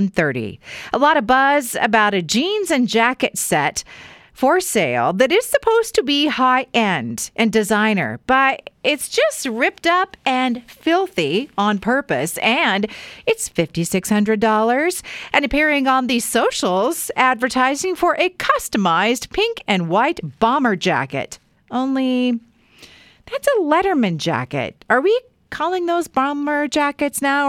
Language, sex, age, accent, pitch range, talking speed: English, female, 40-59, American, 195-305 Hz, 130 wpm